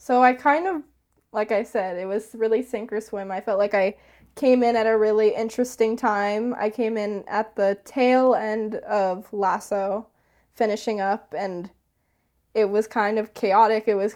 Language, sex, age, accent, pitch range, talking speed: English, female, 10-29, American, 200-235 Hz, 180 wpm